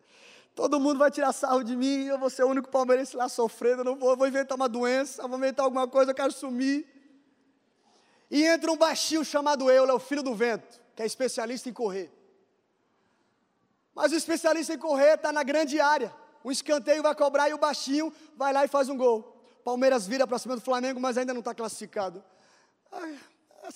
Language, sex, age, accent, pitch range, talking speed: Portuguese, male, 20-39, Brazilian, 195-285 Hz, 200 wpm